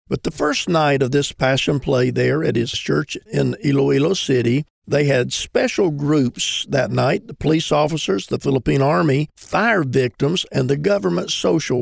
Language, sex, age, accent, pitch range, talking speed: English, male, 50-69, American, 125-150 Hz, 170 wpm